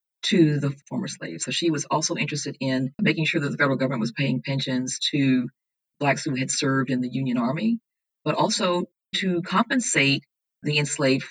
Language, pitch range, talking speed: English, 135-165 Hz, 180 wpm